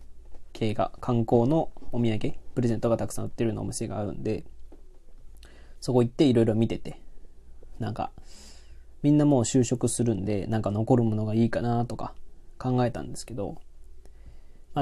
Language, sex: Japanese, male